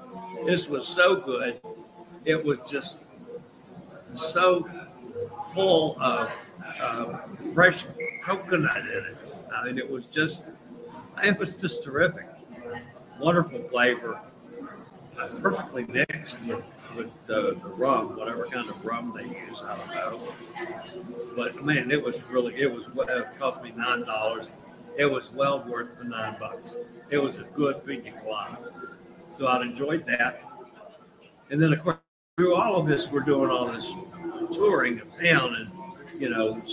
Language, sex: English, male